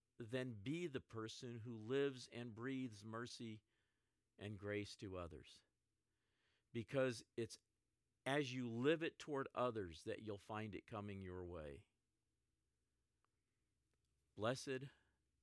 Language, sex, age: English, male, 50-69